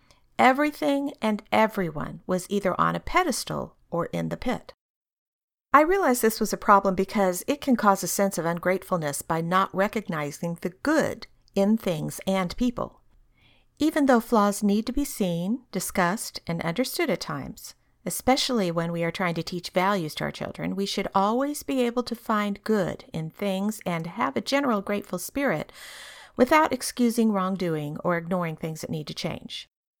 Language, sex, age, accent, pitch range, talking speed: English, female, 50-69, American, 170-235 Hz, 170 wpm